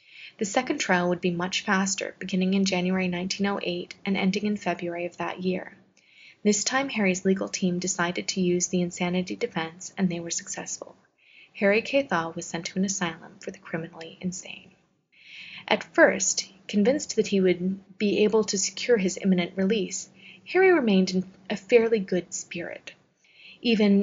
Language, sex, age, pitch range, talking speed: English, female, 30-49, 180-210 Hz, 160 wpm